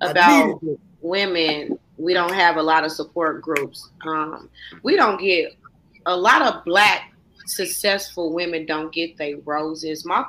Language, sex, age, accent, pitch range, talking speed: English, female, 30-49, American, 165-225 Hz, 145 wpm